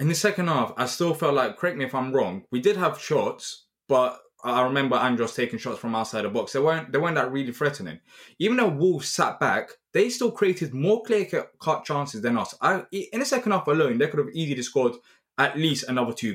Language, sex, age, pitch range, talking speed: English, male, 20-39, 130-205 Hz, 230 wpm